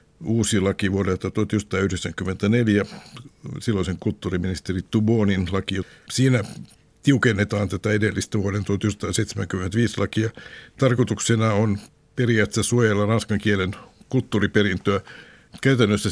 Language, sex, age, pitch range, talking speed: Finnish, male, 60-79, 95-110 Hz, 85 wpm